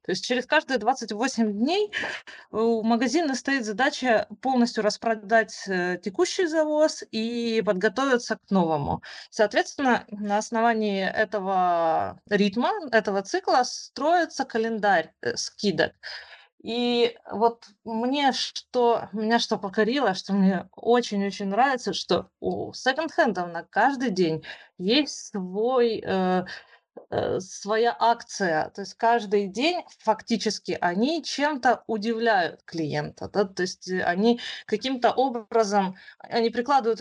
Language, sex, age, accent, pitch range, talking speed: Russian, female, 20-39, native, 195-245 Hz, 110 wpm